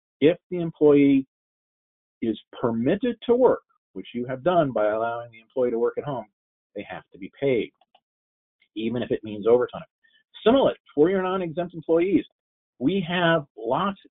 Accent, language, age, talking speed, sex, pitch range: American, English, 40-59, 155 wpm, male, 110-170 Hz